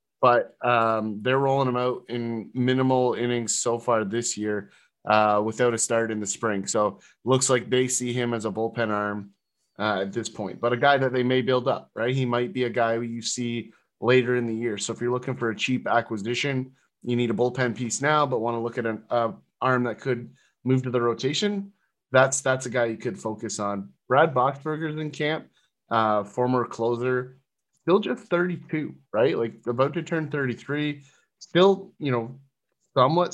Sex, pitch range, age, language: male, 115-135 Hz, 30-49, English